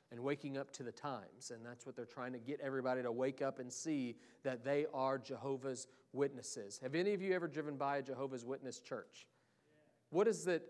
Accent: American